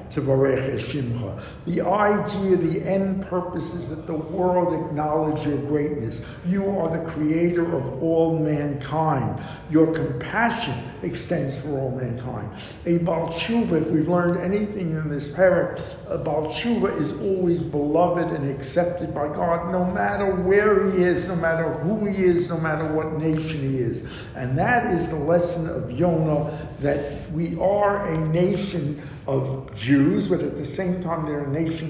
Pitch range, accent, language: 145-180 Hz, American, English